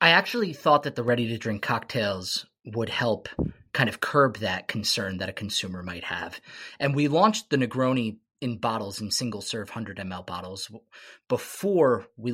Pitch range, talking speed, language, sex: 105-140 Hz, 155 wpm, English, male